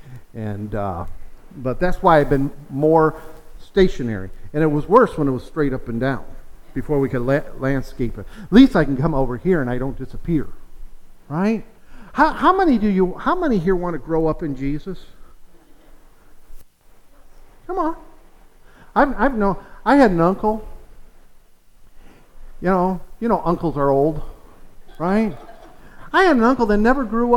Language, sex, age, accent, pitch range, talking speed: English, male, 50-69, American, 150-245 Hz, 165 wpm